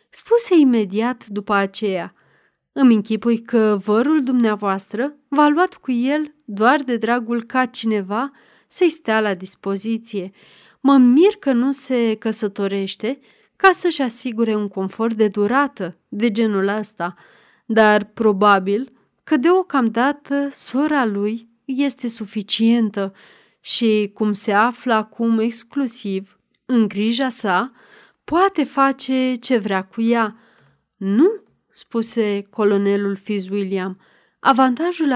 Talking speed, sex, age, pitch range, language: 115 wpm, female, 30-49, 210-270 Hz, Romanian